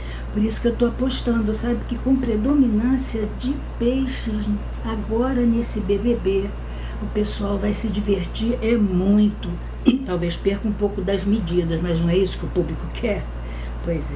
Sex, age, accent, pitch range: female, 60-79, Brazilian, 180-225 Hz